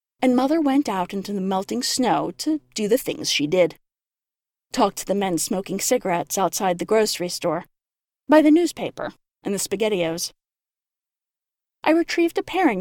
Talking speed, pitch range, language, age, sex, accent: 160 wpm, 190-280 Hz, English, 30-49, female, American